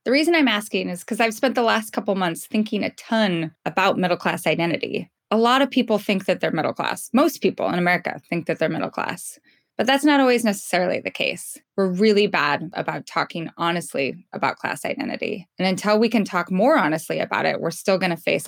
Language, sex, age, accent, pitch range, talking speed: English, female, 20-39, American, 175-230 Hz, 210 wpm